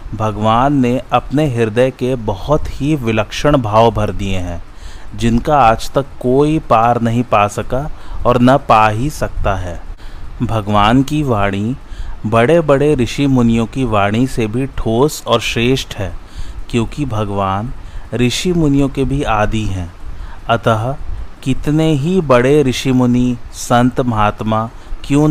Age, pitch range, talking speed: 30-49, 105-130 Hz, 140 wpm